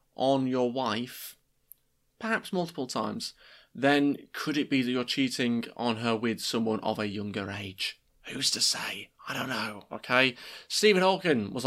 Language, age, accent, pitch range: English, 20-39, British, 120-160 Hz